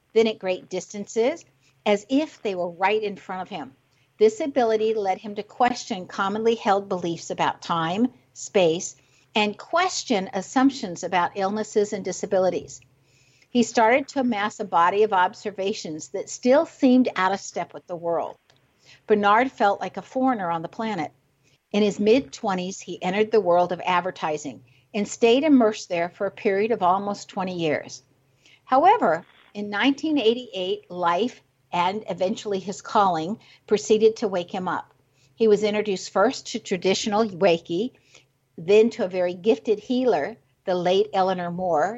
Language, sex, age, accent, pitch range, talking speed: English, female, 60-79, American, 175-225 Hz, 155 wpm